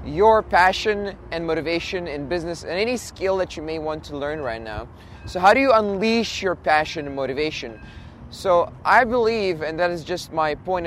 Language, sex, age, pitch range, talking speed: English, male, 20-39, 140-190 Hz, 195 wpm